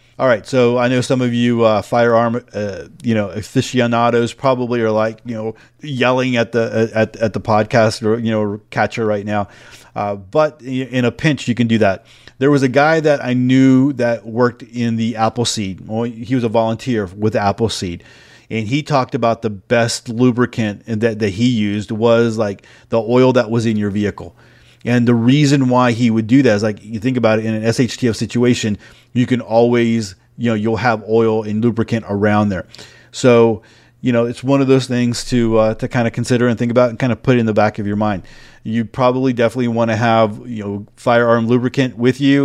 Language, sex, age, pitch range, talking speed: English, male, 30-49, 110-125 Hz, 210 wpm